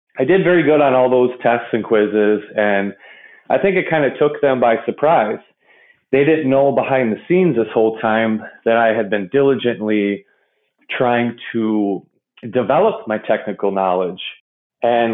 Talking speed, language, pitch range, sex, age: 165 wpm, English, 110-130 Hz, male, 30-49